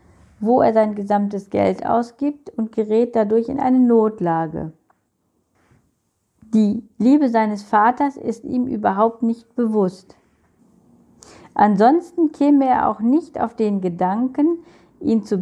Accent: German